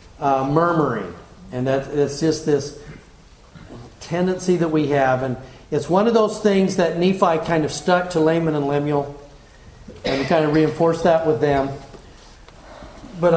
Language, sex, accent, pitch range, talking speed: English, male, American, 145-190 Hz, 155 wpm